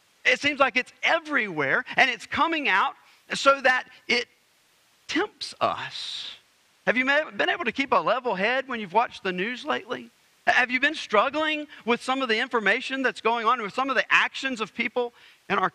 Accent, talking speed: American, 190 wpm